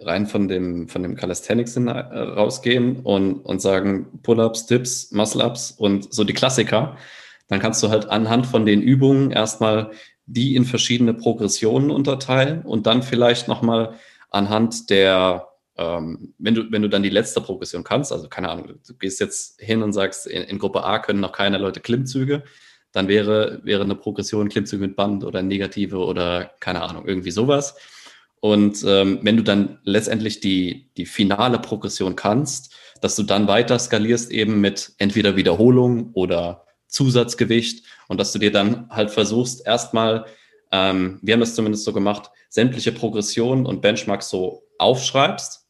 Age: 20-39